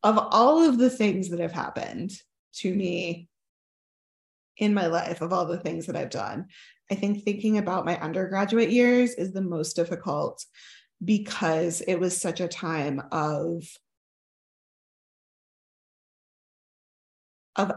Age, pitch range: 20-39, 175-230 Hz